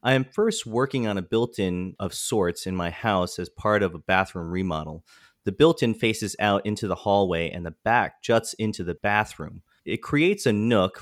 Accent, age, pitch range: American, 30-49, 90-115 Hz